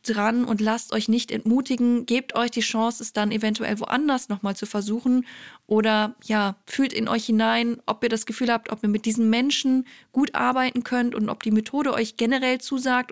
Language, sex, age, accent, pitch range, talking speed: German, female, 20-39, German, 220-245 Hz, 195 wpm